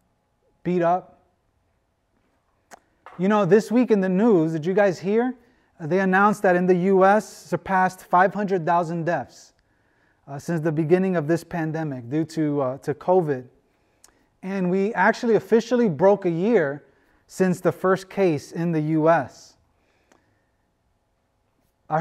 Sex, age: male, 30-49